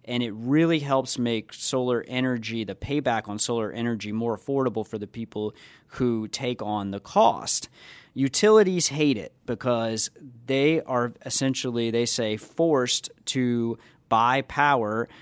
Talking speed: 140 wpm